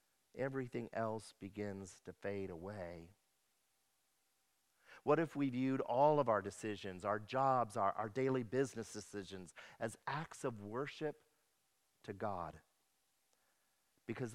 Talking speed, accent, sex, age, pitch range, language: 115 wpm, American, male, 50-69, 115-155 Hz, English